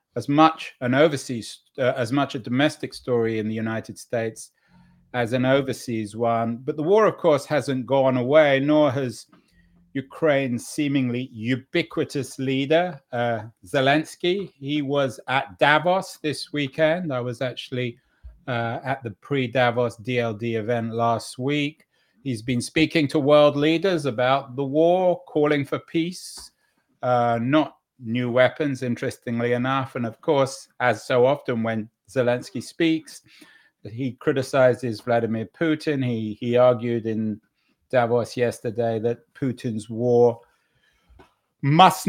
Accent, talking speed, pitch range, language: British, 130 wpm, 120-155 Hz, English